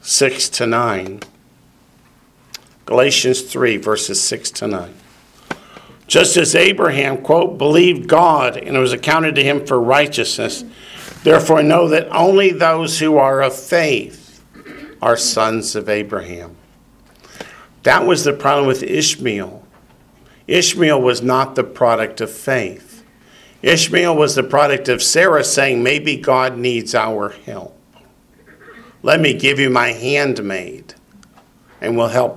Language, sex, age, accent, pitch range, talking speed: English, male, 50-69, American, 120-150 Hz, 130 wpm